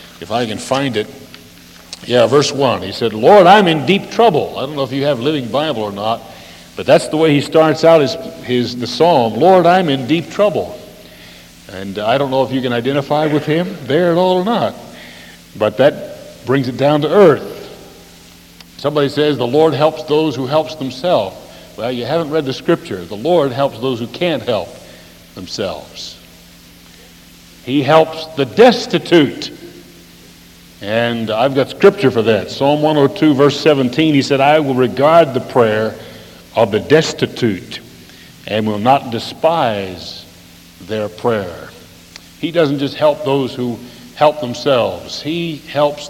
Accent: American